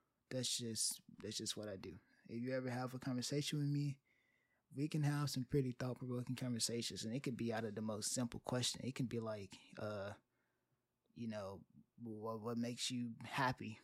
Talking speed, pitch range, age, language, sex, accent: 195 wpm, 110-130 Hz, 20-39, English, male, American